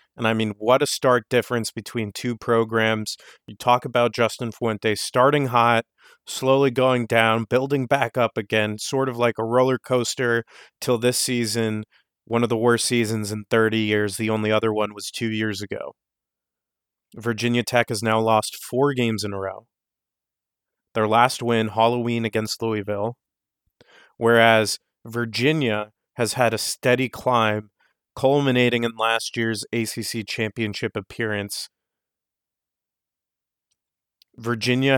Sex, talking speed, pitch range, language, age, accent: male, 135 wpm, 110-125 Hz, English, 30-49, American